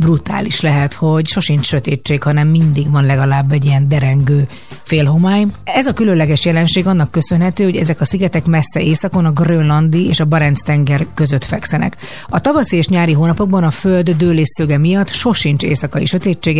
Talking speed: 170 wpm